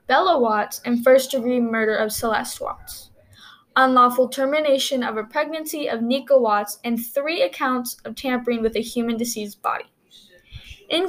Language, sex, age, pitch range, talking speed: English, female, 10-29, 235-290 Hz, 145 wpm